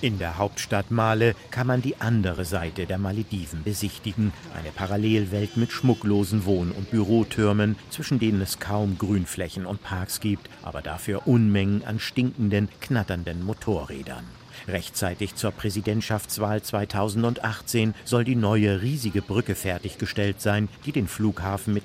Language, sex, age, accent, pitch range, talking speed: German, male, 50-69, German, 95-115 Hz, 135 wpm